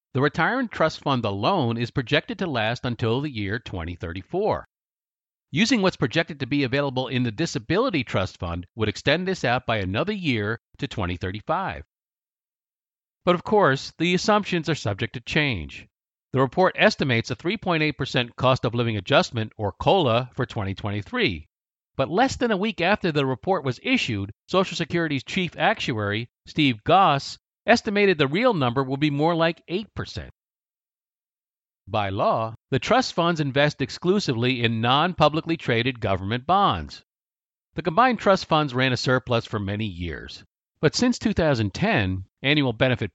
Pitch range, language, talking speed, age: 115-170 Hz, English, 150 wpm, 50-69